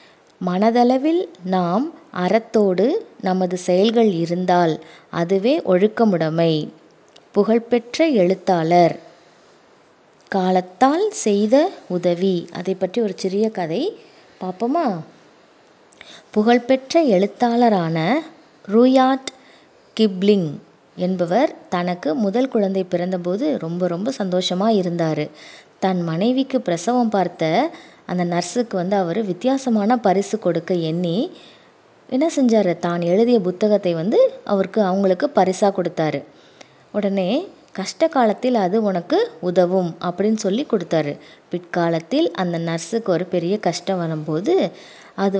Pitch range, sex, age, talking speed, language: 180-240 Hz, female, 20-39, 95 wpm, English